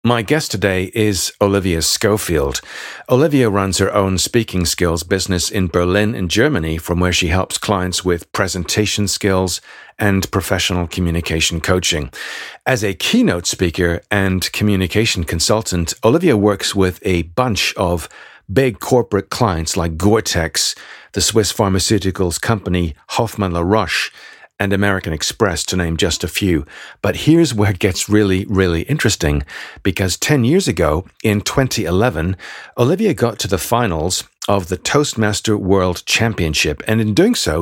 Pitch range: 90-115 Hz